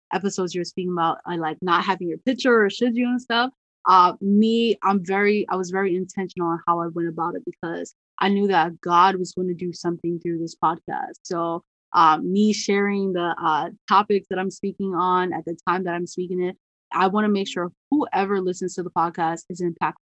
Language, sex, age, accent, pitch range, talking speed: English, female, 20-39, American, 175-200 Hz, 215 wpm